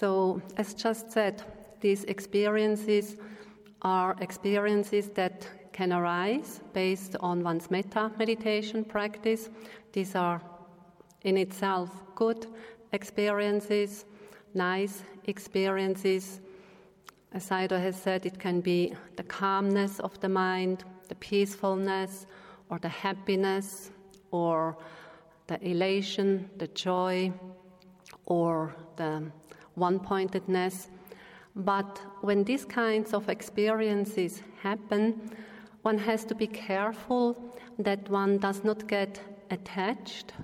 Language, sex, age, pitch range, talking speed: English, female, 40-59, 185-210 Hz, 100 wpm